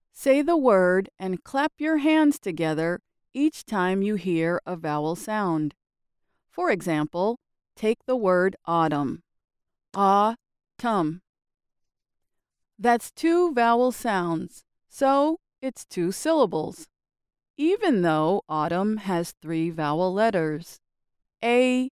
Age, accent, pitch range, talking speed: 40-59, American, 175-250 Hz, 105 wpm